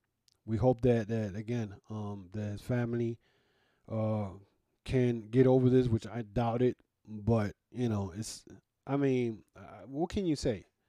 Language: English